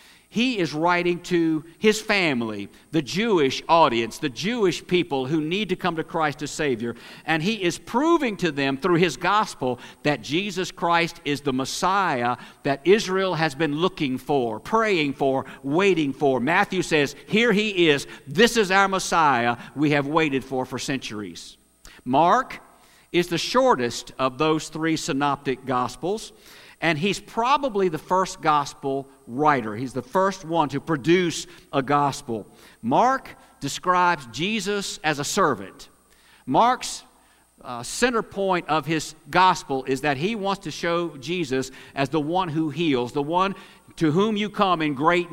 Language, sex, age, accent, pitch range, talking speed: English, male, 50-69, American, 135-185 Hz, 155 wpm